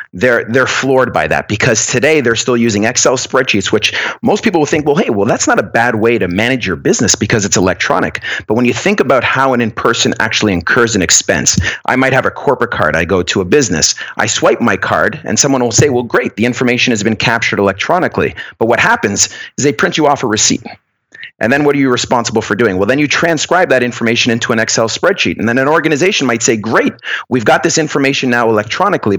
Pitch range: 110-135 Hz